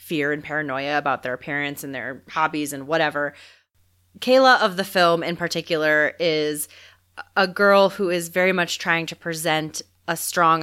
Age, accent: 30-49, American